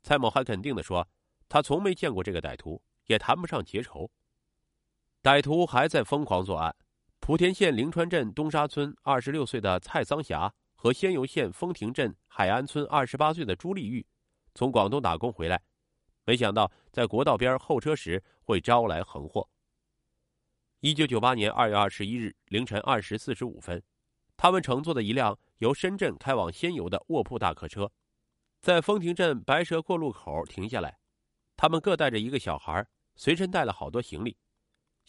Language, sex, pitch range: Chinese, male, 105-155 Hz